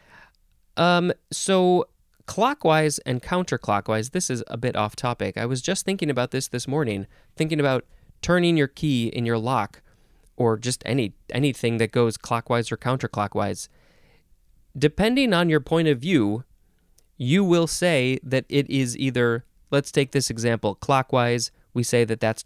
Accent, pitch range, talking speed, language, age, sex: American, 115-160 Hz, 155 wpm, English, 30-49, male